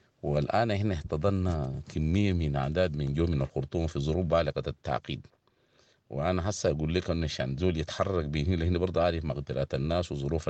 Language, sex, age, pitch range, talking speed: English, male, 50-69, 80-105 Hz, 165 wpm